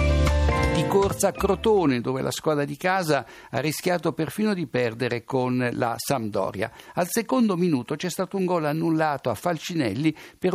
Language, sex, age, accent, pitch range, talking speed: Italian, male, 60-79, native, 130-180 Hz, 155 wpm